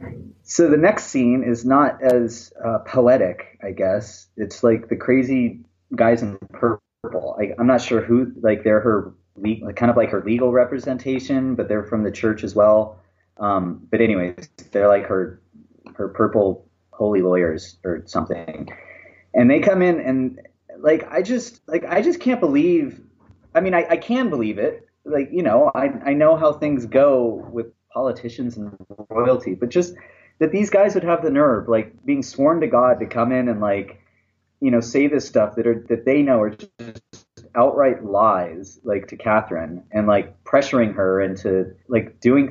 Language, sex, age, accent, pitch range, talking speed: English, male, 30-49, American, 105-130 Hz, 180 wpm